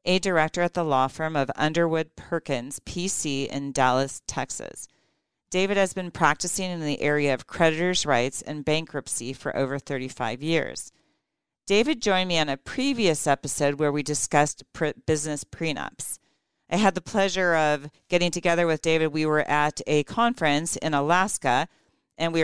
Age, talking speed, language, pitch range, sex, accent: 40-59, 160 wpm, English, 140-170 Hz, female, American